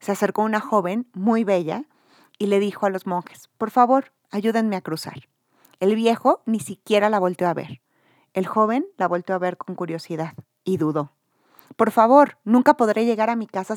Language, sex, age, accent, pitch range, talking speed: Spanish, female, 40-59, Mexican, 185-230 Hz, 190 wpm